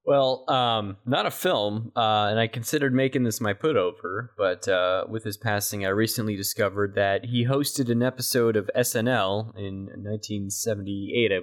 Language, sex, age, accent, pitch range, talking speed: English, male, 20-39, American, 110-125 Hz, 165 wpm